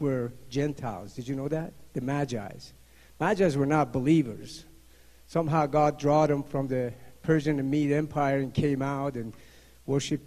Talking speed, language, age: 160 wpm, English, 60-79